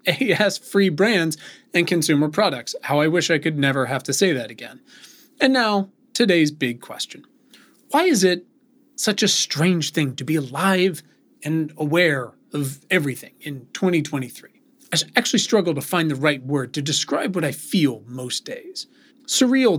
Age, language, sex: 30-49, English, male